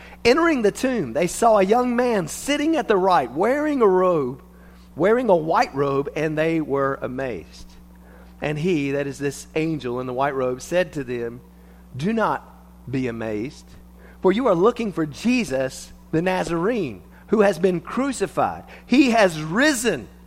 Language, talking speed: English, 165 wpm